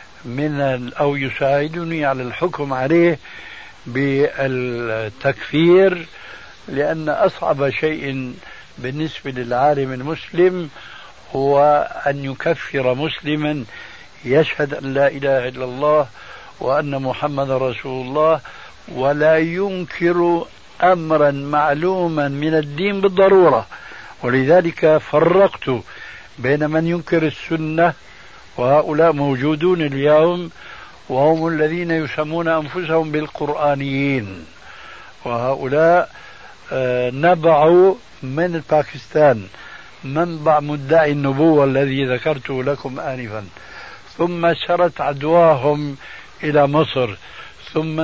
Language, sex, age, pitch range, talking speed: Arabic, male, 60-79, 135-160 Hz, 80 wpm